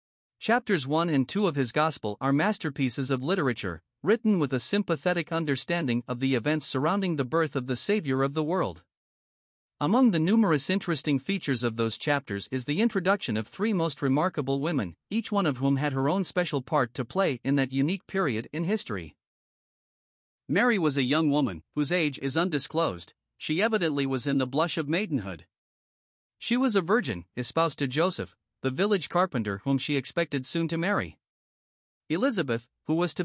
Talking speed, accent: 175 wpm, American